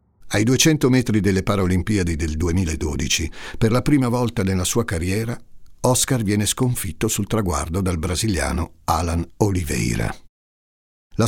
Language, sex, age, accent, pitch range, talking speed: Italian, male, 60-79, native, 90-120 Hz, 130 wpm